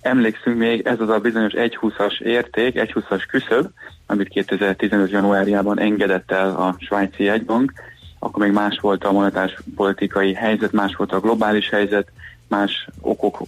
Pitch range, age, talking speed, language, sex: 100-110 Hz, 30-49, 150 wpm, Hungarian, male